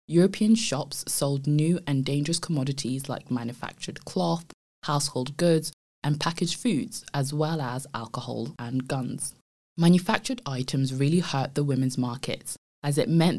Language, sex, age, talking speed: English, female, 20-39, 140 wpm